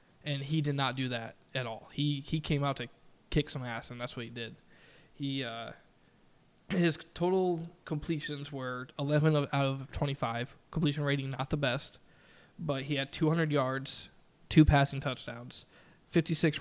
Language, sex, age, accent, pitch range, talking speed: English, male, 20-39, American, 130-150 Hz, 165 wpm